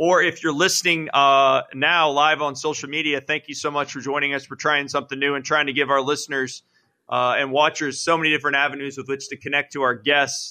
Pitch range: 135-160 Hz